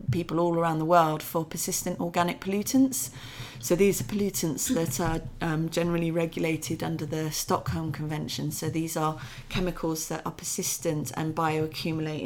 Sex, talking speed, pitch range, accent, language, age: female, 150 wpm, 150-175 Hz, British, English, 30-49